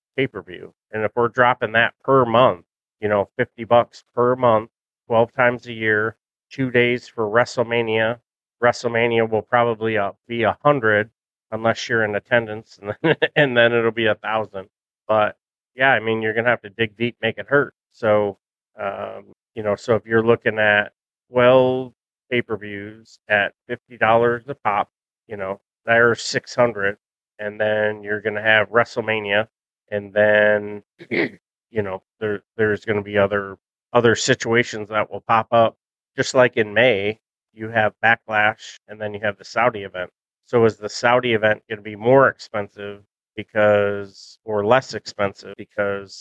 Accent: American